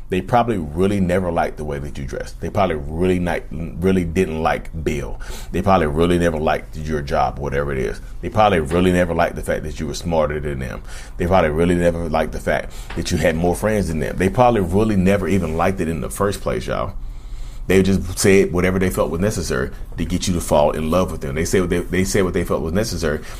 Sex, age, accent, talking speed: male, 30-49, American, 245 wpm